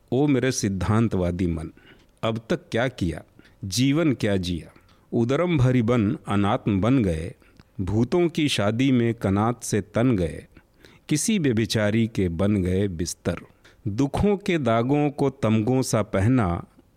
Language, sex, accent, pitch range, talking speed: Hindi, male, native, 100-135 Hz, 135 wpm